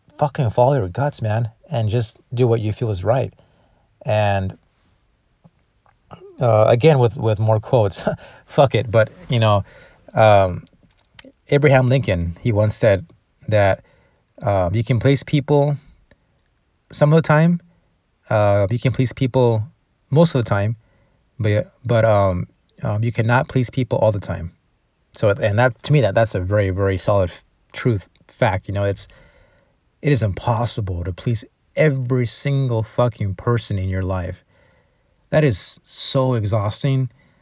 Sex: male